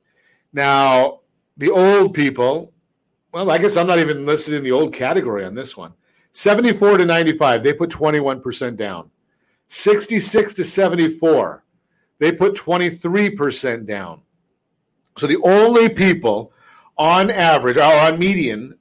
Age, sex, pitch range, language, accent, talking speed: 50-69, male, 150-195 Hz, English, American, 130 wpm